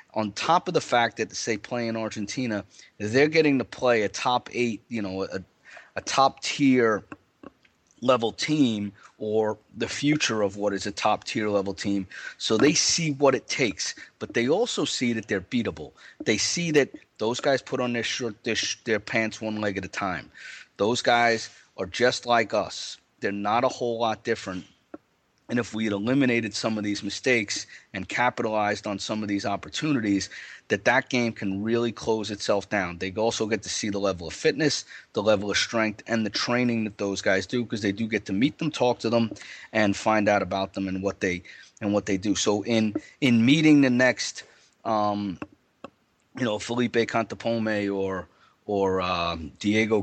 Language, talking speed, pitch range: English, 190 wpm, 100-120 Hz